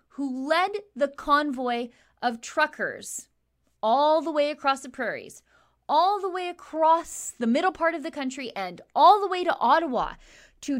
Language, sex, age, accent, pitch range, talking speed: English, female, 20-39, American, 230-305 Hz, 160 wpm